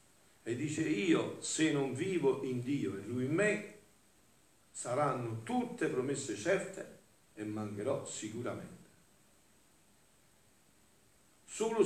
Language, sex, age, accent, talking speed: Italian, male, 50-69, native, 100 wpm